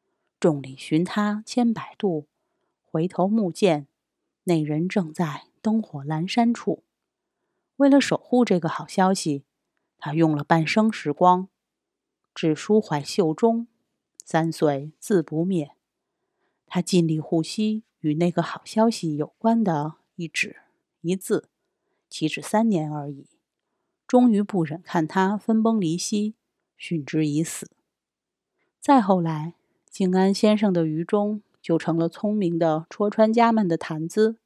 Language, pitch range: Chinese, 160-220 Hz